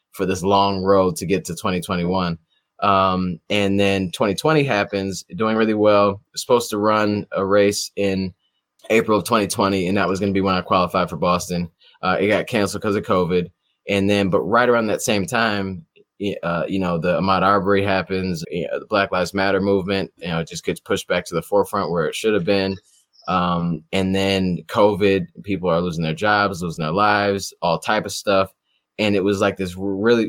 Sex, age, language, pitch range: male, 20-39, English, 95-100 Hz